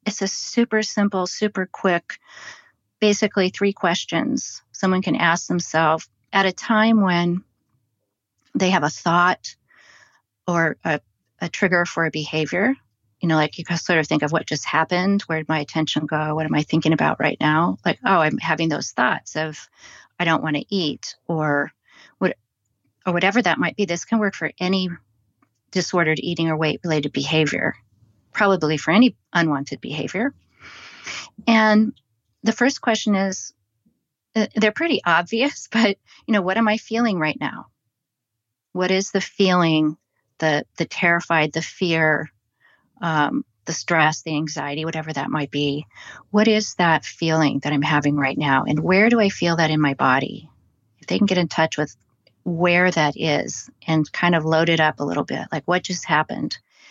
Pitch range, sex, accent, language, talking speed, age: 150-190 Hz, female, American, English, 170 wpm, 40-59